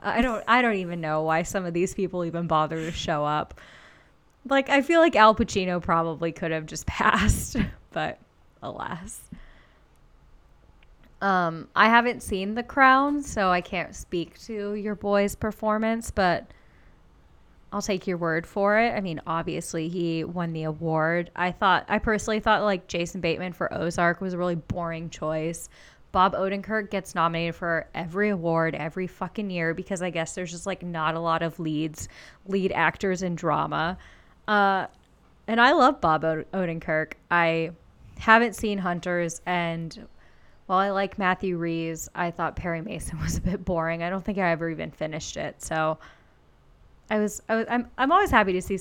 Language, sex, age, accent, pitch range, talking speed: English, female, 10-29, American, 165-200 Hz, 170 wpm